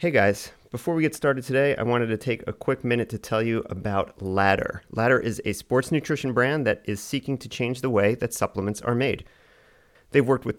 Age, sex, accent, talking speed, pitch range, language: 40-59, male, American, 220 wpm, 100-125 Hz, English